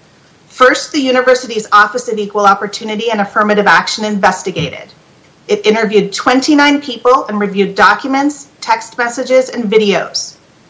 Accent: American